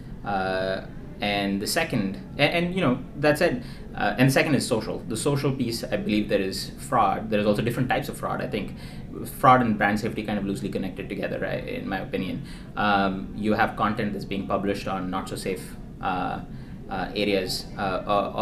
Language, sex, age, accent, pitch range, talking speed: English, male, 20-39, Indian, 100-120 Hz, 190 wpm